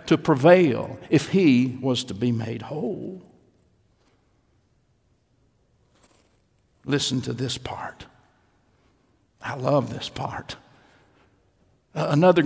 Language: English